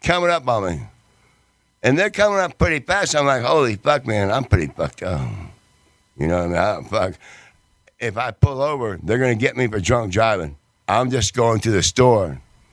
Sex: male